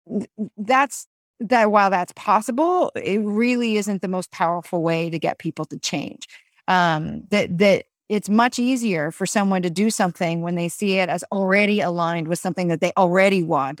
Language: English